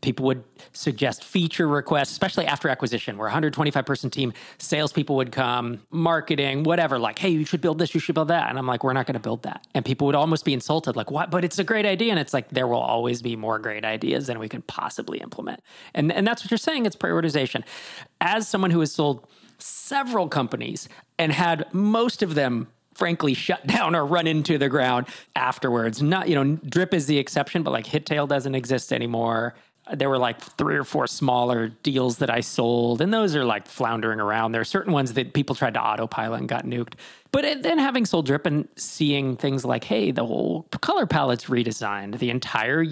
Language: English